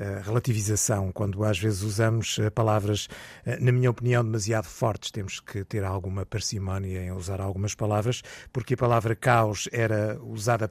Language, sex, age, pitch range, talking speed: Portuguese, male, 50-69, 105-130 Hz, 145 wpm